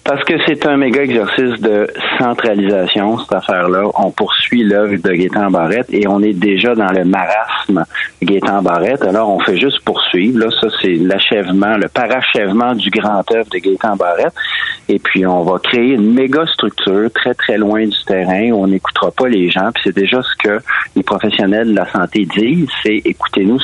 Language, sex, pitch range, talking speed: French, male, 100-120 Hz, 190 wpm